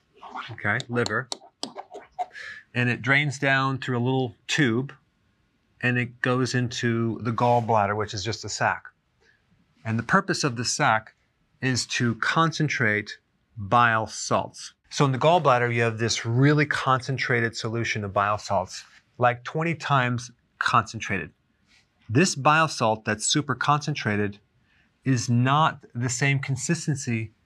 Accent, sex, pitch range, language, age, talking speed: American, male, 115-140 Hz, English, 40-59, 130 wpm